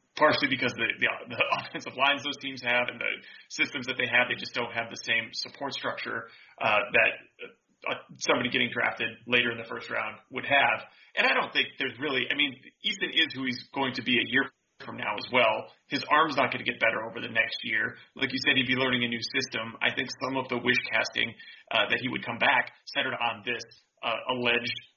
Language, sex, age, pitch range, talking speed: English, male, 30-49, 120-130 Hz, 230 wpm